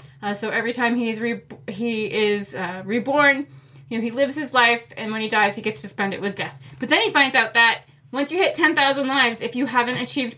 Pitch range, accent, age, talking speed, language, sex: 195-255 Hz, American, 20-39, 245 wpm, English, female